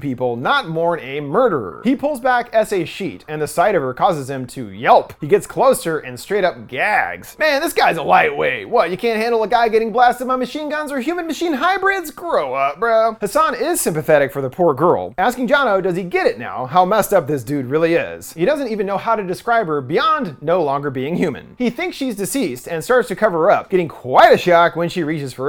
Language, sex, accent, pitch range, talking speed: English, male, American, 165-255 Hz, 235 wpm